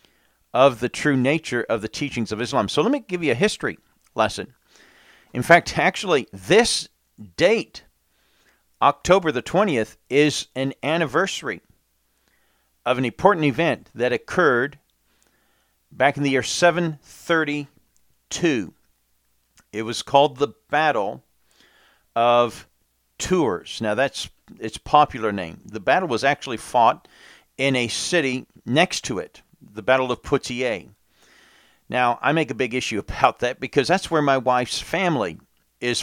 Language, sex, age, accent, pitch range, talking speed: English, male, 40-59, American, 110-145 Hz, 135 wpm